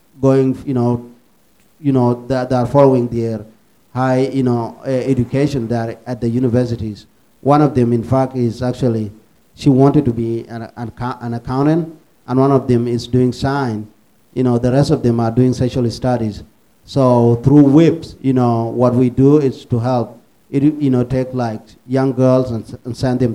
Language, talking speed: English, 180 wpm